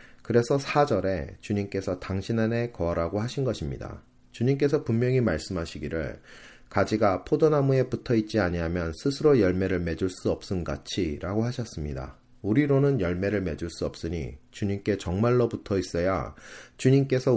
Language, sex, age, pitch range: Korean, male, 30-49, 90-125 Hz